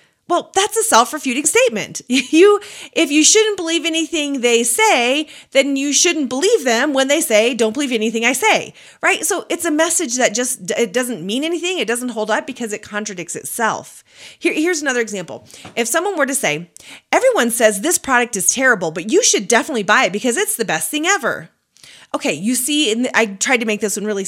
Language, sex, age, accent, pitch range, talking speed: English, female, 30-49, American, 220-310 Hz, 210 wpm